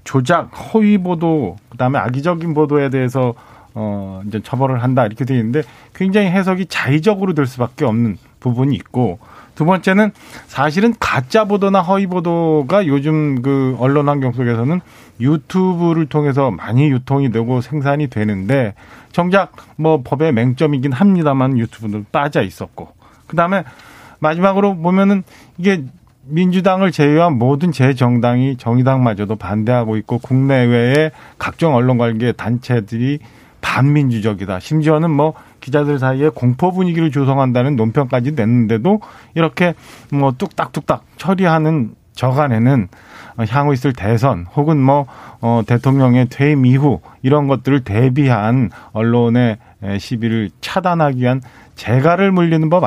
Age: 40-59